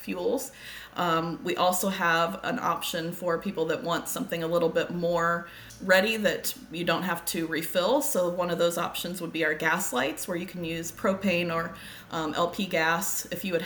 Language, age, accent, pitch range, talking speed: English, 20-39, American, 165-200 Hz, 200 wpm